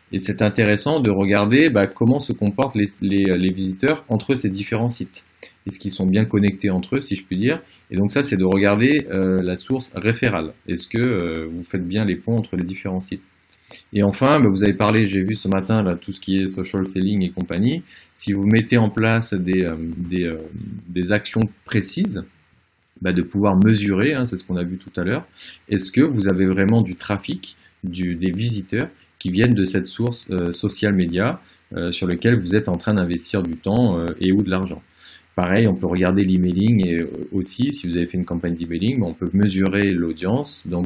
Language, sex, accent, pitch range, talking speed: French, male, French, 90-115 Hz, 215 wpm